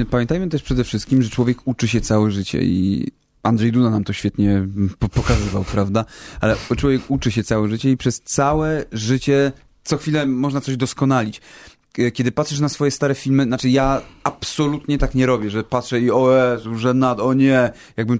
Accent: native